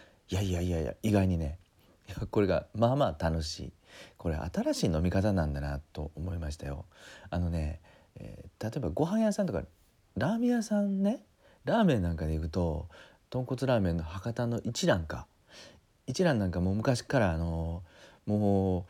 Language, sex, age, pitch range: Japanese, male, 40-59, 80-110 Hz